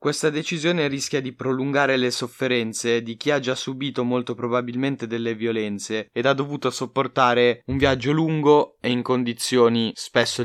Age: 20-39